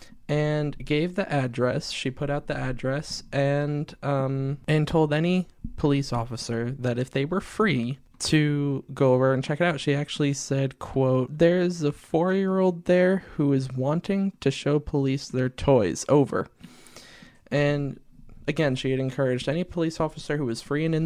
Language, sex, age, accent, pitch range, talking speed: English, male, 20-39, American, 125-150 Hz, 165 wpm